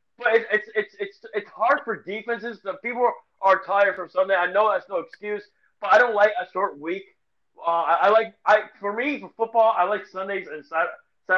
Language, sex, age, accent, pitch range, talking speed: English, male, 30-49, American, 185-225 Hz, 215 wpm